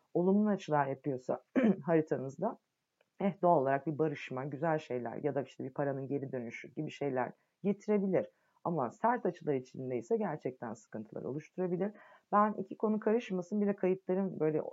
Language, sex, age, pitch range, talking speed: Turkish, female, 30-49, 140-195 Hz, 145 wpm